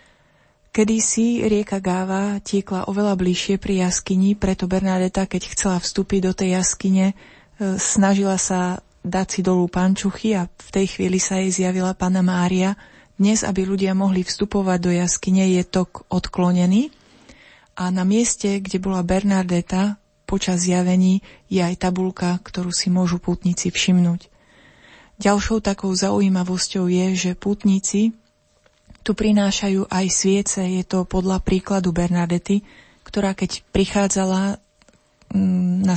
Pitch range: 185-200 Hz